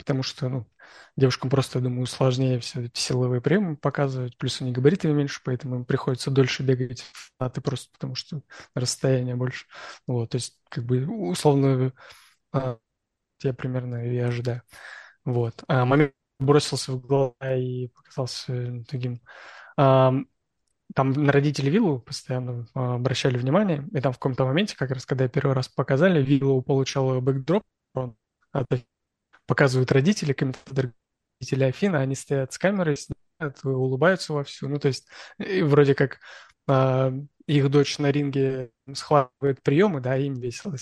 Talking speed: 145 wpm